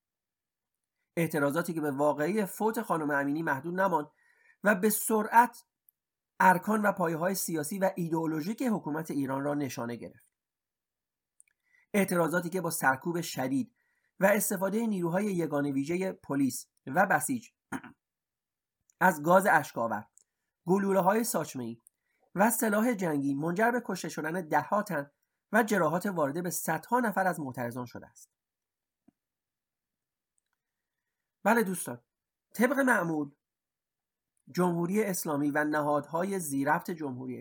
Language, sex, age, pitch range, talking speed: Persian, male, 40-59, 145-205 Hz, 110 wpm